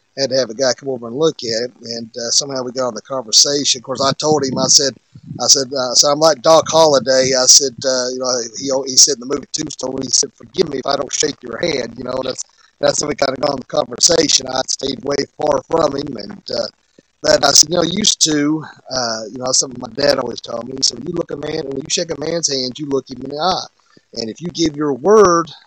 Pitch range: 130-155 Hz